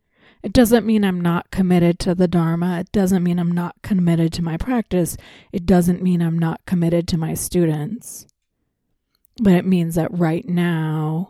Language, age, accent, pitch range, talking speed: English, 30-49, American, 170-205 Hz, 175 wpm